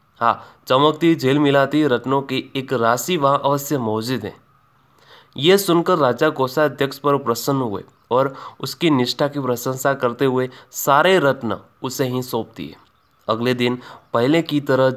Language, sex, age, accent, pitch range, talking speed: Hindi, male, 20-39, native, 125-150 Hz, 150 wpm